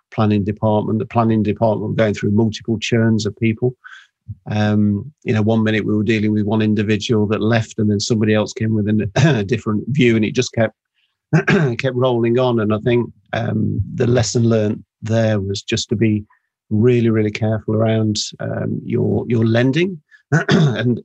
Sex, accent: male, British